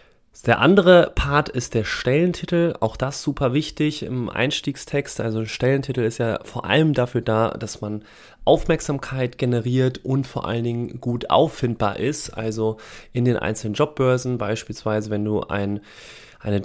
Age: 30-49